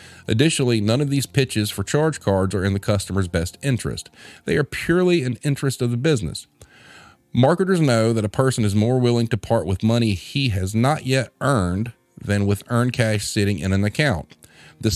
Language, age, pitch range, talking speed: English, 40-59, 100-130 Hz, 195 wpm